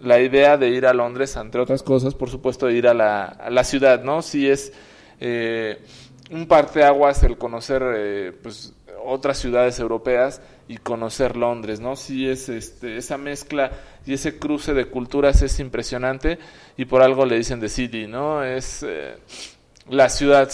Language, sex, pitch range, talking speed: Spanish, male, 120-150 Hz, 180 wpm